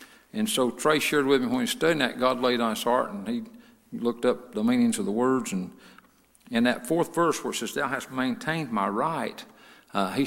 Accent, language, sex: American, English, male